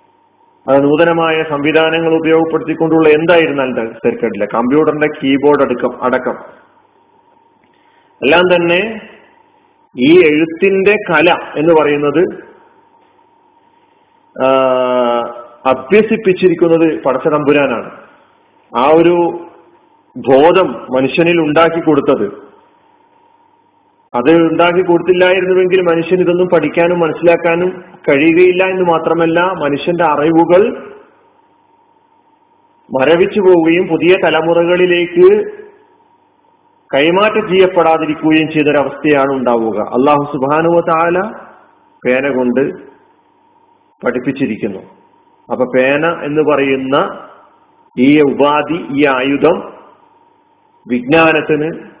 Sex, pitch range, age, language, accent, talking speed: male, 145-200 Hz, 40-59, Malayalam, native, 70 wpm